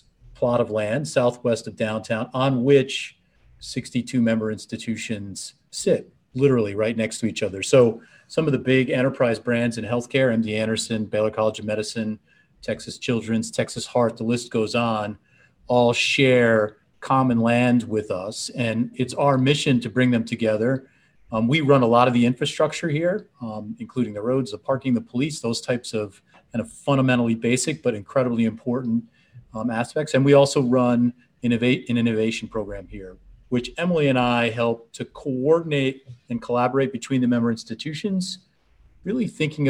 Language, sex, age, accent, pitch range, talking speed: English, male, 40-59, American, 110-130 Hz, 165 wpm